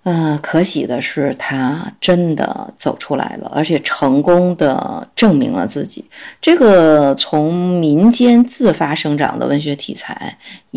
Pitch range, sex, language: 150-210 Hz, female, Chinese